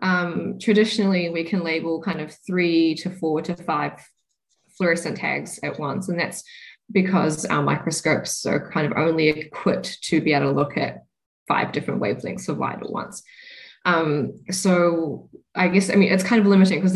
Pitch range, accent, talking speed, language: 150-190 Hz, Australian, 175 wpm, English